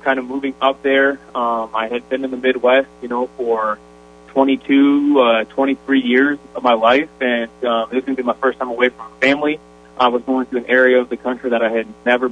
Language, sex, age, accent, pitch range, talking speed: English, male, 30-49, American, 120-135 Hz, 225 wpm